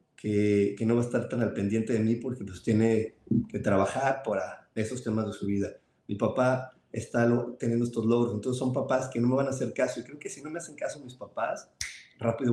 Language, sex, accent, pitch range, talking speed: Spanish, male, Mexican, 110-125 Hz, 240 wpm